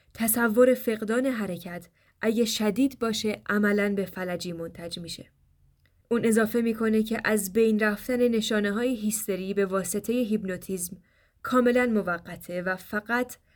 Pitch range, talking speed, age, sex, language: 175-225 Hz, 125 wpm, 10-29, female, Persian